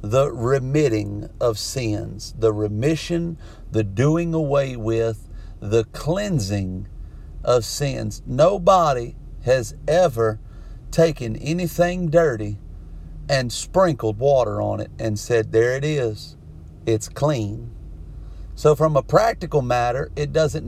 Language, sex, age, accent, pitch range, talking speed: English, male, 50-69, American, 110-145 Hz, 115 wpm